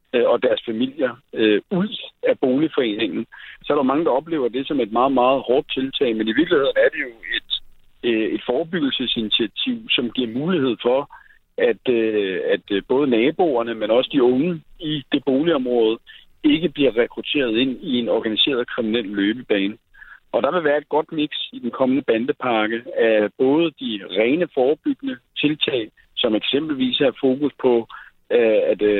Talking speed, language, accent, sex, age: 160 wpm, Danish, native, male, 60-79